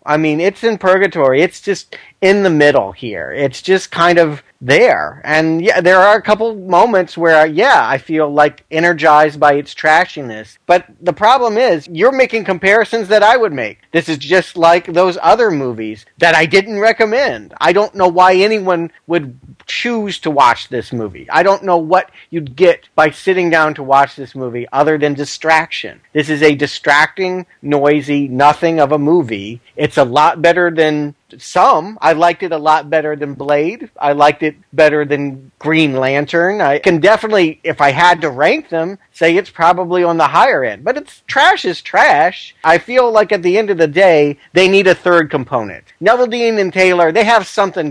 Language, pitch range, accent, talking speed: English, 145-185 Hz, American, 190 wpm